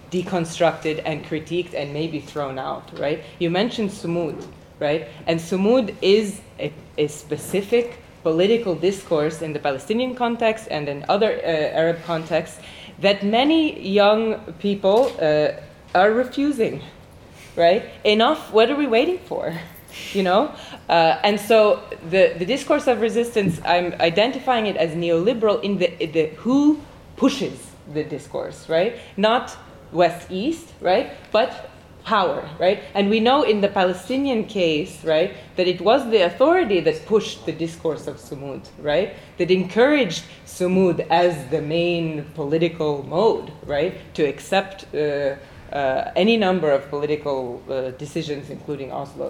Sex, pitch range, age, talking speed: female, 160-220 Hz, 20-39, 140 wpm